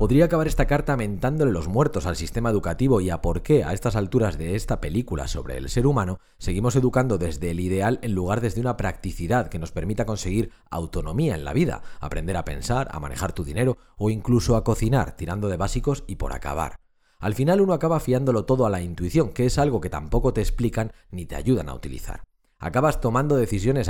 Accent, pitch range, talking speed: Spanish, 90-130 Hz, 210 wpm